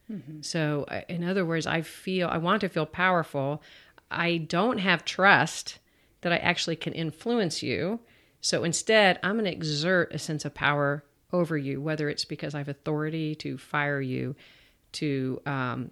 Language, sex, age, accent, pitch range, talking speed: English, female, 40-59, American, 145-180 Hz, 165 wpm